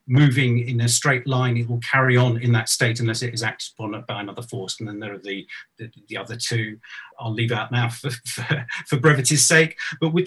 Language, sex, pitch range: English, male, 120-150 Hz